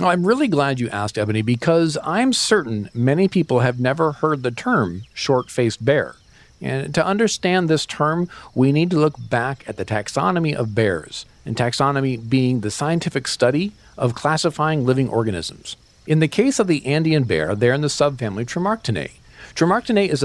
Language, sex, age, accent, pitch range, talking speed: English, male, 50-69, American, 115-155 Hz, 170 wpm